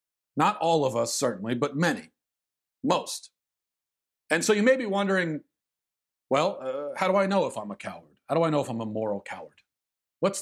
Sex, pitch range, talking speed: male, 125-165 Hz, 195 wpm